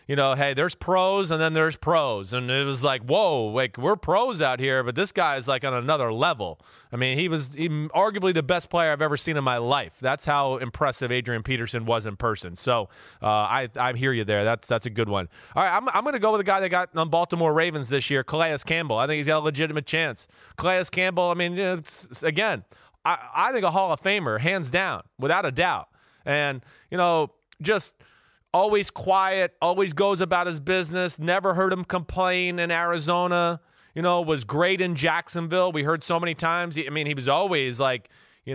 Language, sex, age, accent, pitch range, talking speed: English, male, 30-49, American, 130-170 Hz, 225 wpm